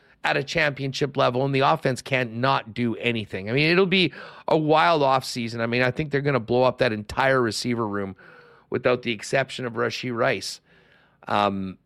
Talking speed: 195 wpm